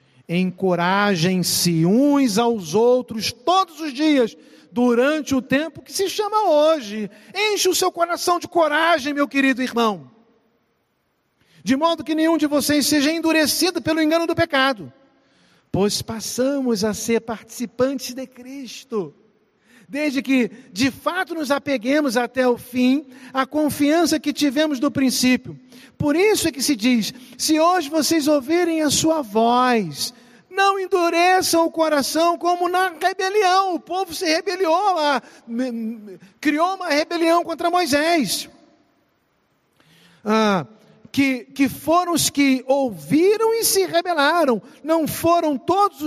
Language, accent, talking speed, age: Portuguese, Brazilian, 130 wpm, 50-69